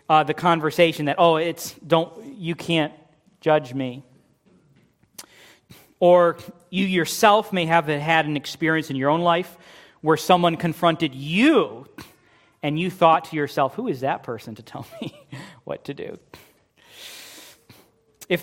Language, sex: English, male